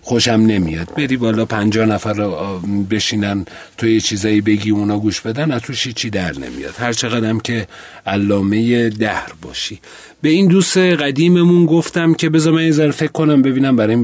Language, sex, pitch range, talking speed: Persian, male, 100-135 Hz, 170 wpm